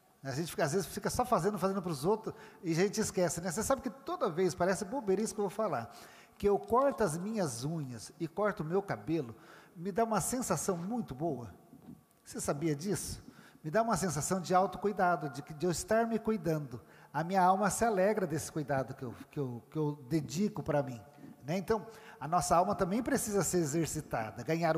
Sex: male